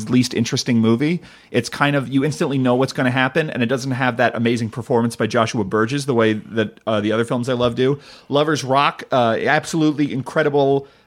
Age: 30-49